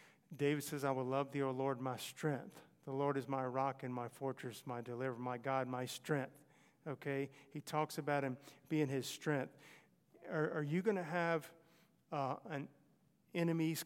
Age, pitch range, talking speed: 50-69, 135-155 Hz, 170 wpm